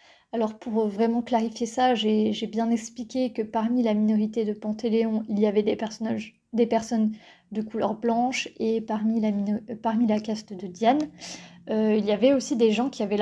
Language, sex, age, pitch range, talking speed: French, female, 20-39, 215-250 Hz, 195 wpm